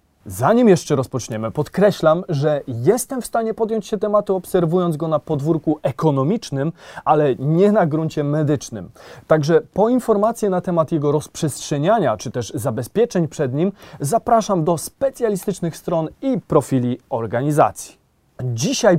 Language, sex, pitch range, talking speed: Polish, male, 140-195 Hz, 130 wpm